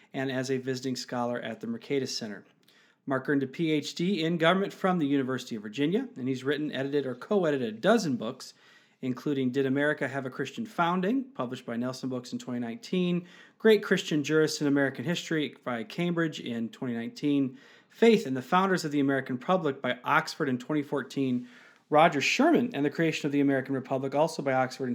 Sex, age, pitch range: male, 40-59, 130-170 Hz